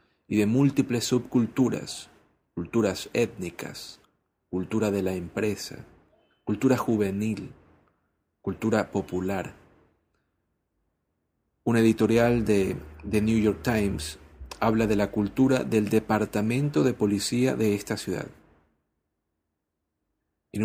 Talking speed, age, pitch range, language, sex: 95 wpm, 40-59, 100-120 Hz, Spanish, male